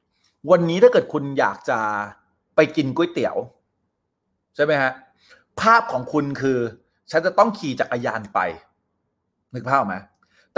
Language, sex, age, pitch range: Thai, male, 30-49, 135-225 Hz